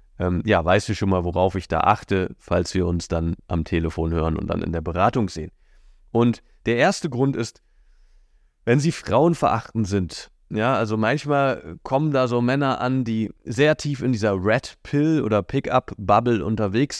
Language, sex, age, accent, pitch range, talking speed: German, male, 30-49, German, 95-115 Hz, 175 wpm